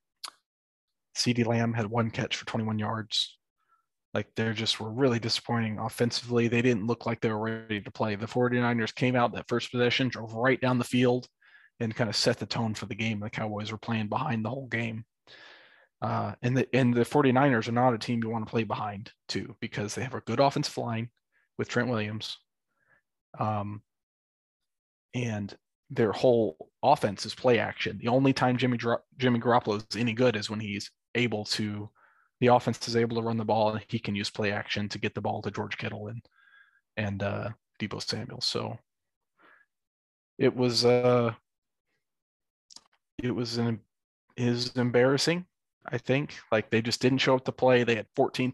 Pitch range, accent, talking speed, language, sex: 110-125 Hz, American, 185 wpm, English, male